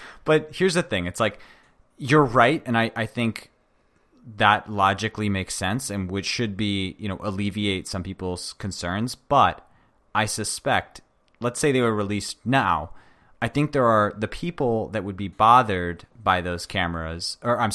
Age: 30-49